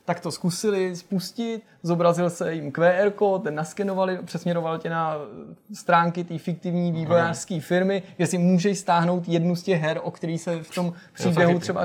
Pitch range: 160-180 Hz